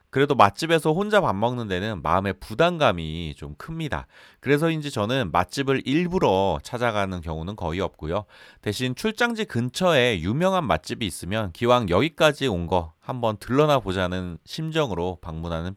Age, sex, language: 30-49, male, Korean